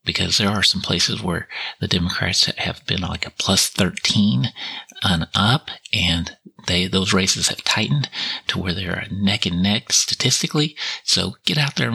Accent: American